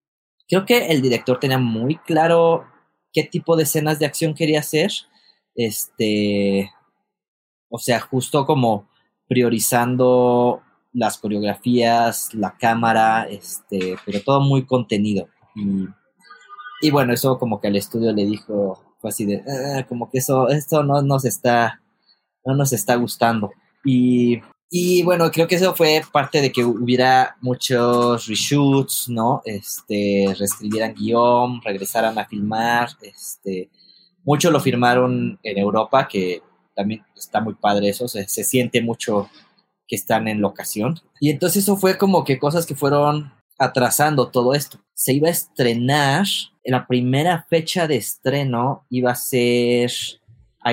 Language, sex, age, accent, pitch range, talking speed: Spanish, male, 20-39, Mexican, 110-150 Hz, 140 wpm